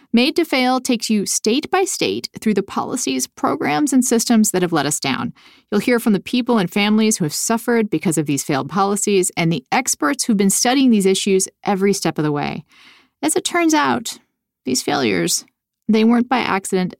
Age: 40-59